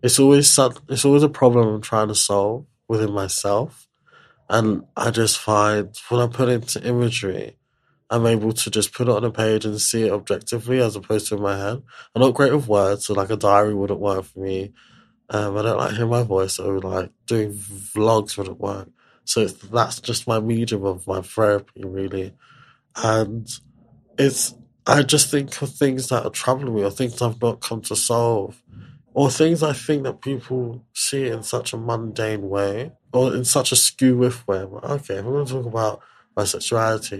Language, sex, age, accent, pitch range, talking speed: English, male, 20-39, British, 105-125 Hz, 200 wpm